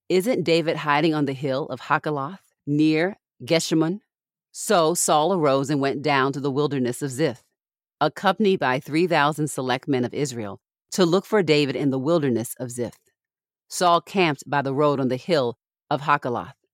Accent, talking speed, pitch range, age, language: American, 170 wpm, 135-175 Hz, 40-59, English